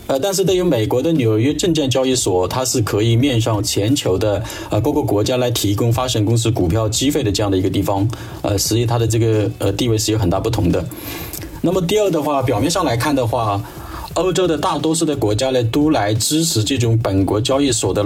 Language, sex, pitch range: Chinese, male, 105-145 Hz